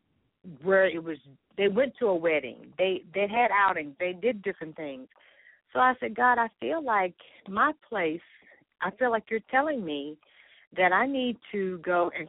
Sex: female